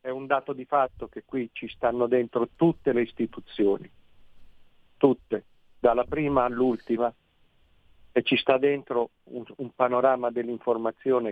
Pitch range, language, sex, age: 115-135 Hz, Italian, male, 50-69